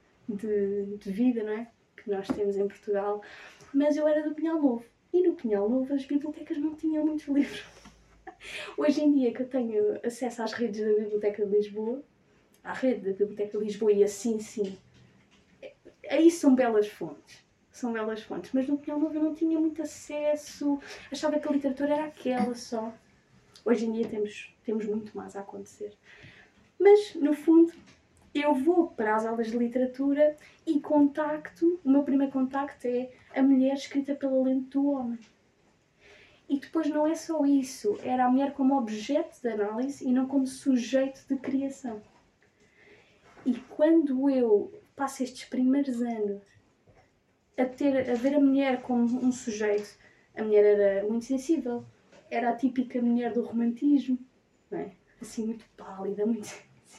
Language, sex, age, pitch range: Portuguese, female, 20-39, 220-290 Hz